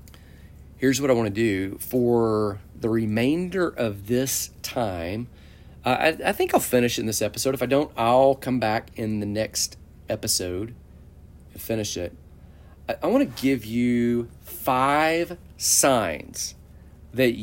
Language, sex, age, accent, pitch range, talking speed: English, male, 40-59, American, 90-125 Hz, 150 wpm